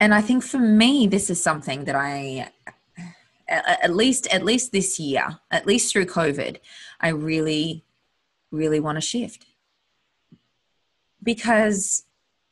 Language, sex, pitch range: English, female, 160-220 Hz